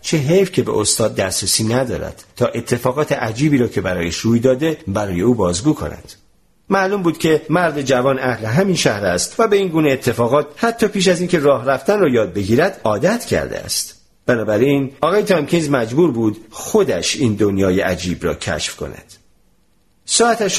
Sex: male